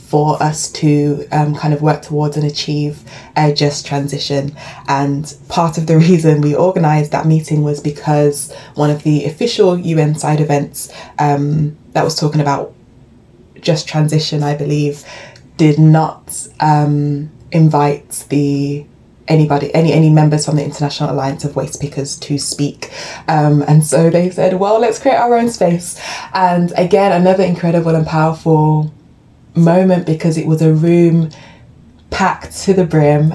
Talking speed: 155 wpm